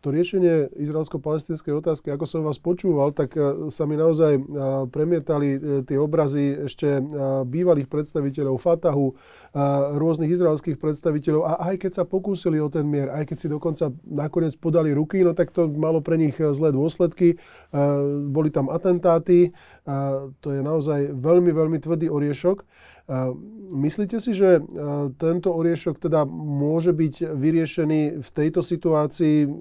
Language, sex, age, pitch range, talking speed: Slovak, male, 20-39, 145-170 Hz, 140 wpm